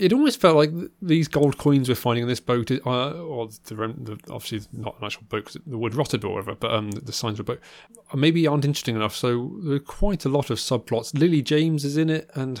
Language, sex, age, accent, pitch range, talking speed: English, male, 20-39, British, 105-140 Hz, 250 wpm